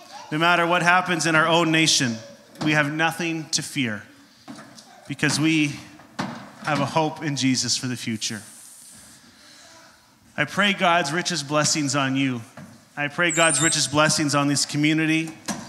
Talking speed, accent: 145 wpm, American